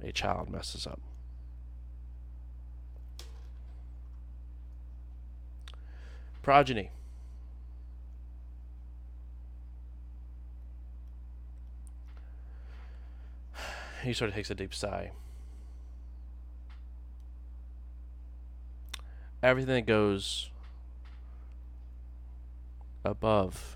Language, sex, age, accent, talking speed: English, male, 30-49, American, 40 wpm